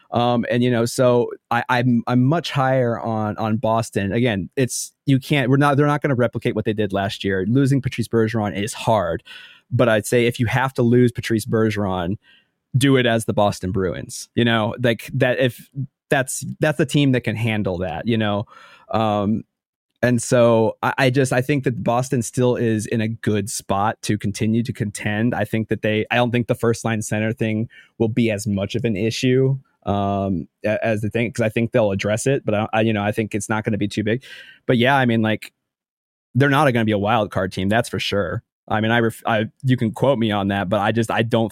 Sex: male